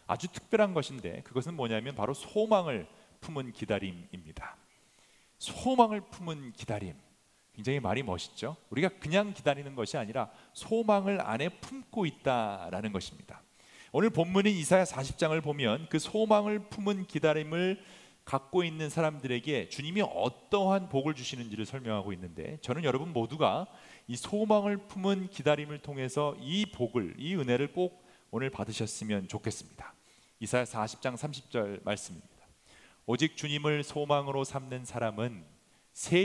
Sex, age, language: male, 40-59, English